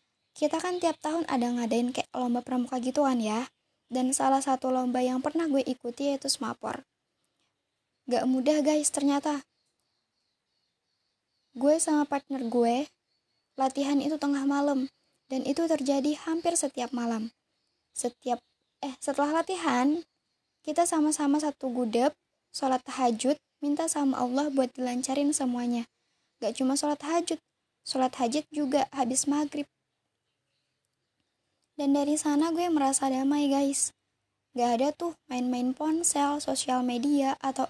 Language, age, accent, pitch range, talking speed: Indonesian, 20-39, native, 255-300 Hz, 125 wpm